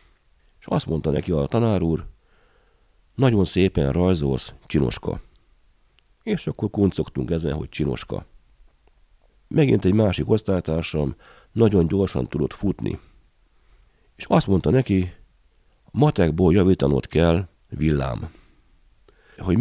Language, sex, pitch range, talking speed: Hungarian, male, 75-100 Hz, 105 wpm